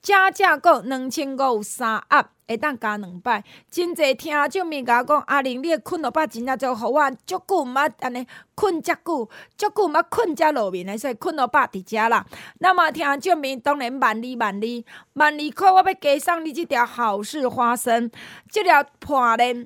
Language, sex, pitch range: Chinese, female, 230-320 Hz